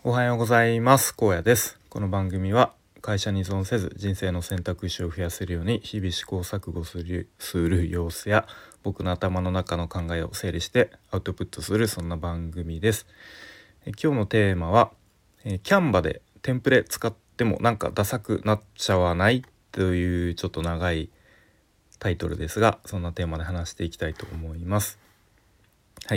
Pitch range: 90-110 Hz